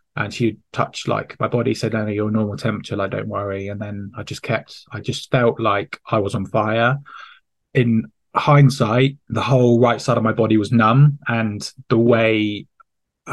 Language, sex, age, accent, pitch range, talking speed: English, male, 20-39, British, 105-125 Hz, 200 wpm